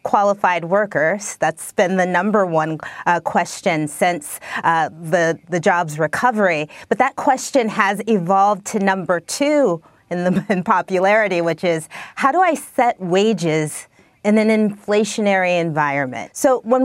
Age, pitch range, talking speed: 30-49, 170-210 Hz, 140 wpm